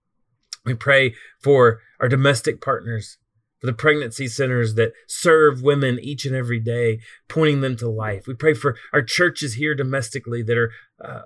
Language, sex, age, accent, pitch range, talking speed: English, male, 30-49, American, 120-150 Hz, 165 wpm